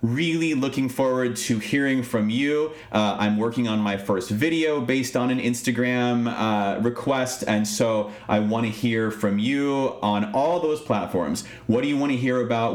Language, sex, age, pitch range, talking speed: English, male, 30-49, 105-135 Hz, 185 wpm